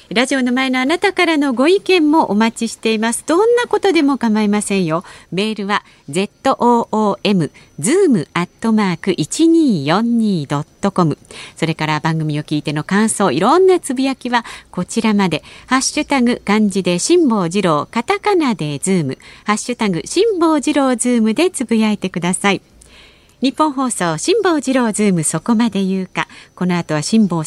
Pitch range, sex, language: 160-255 Hz, female, Japanese